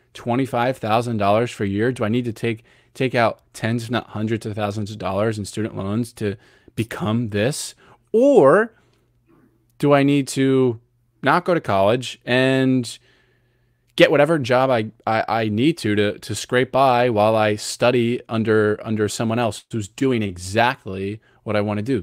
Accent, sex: American, male